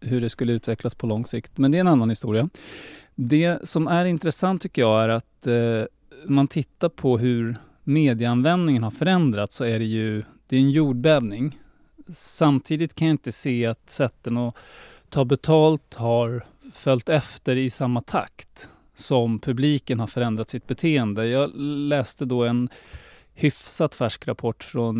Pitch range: 115-140 Hz